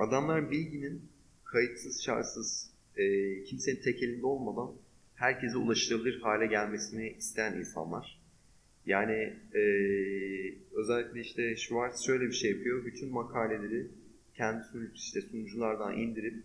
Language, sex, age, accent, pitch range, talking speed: Turkish, male, 30-49, native, 110-130 Hz, 110 wpm